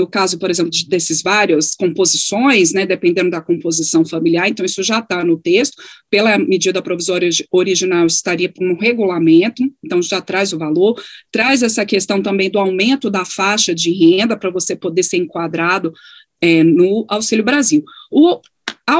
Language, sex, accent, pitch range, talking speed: Portuguese, female, Brazilian, 180-230 Hz, 165 wpm